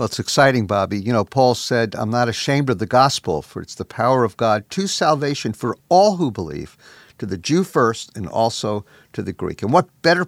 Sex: male